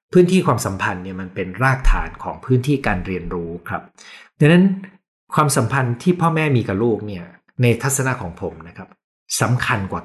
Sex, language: male, Thai